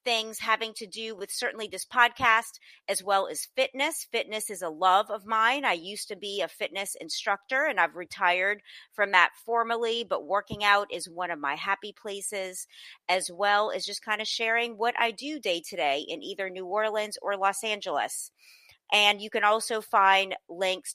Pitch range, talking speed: 185-230 Hz, 190 wpm